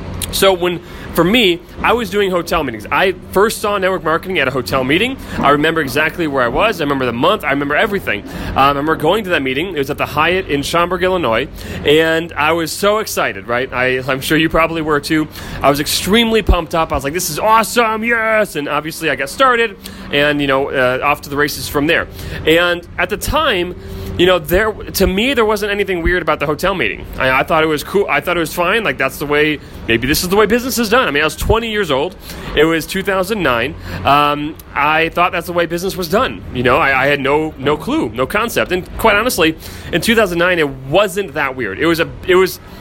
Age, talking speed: 30-49, 235 wpm